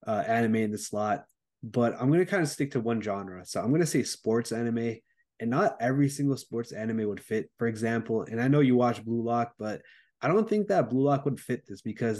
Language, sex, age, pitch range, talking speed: English, male, 20-39, 110-130 Hz, 245 wpm